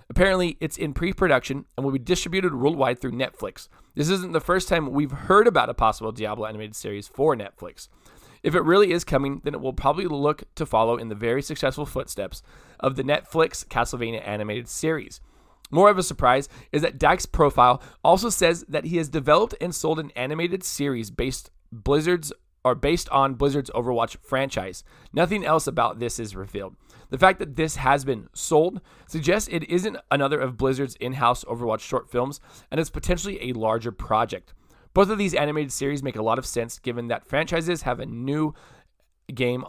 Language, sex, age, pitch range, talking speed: English, male, 20-39, 120-160 Hz, 180 wpm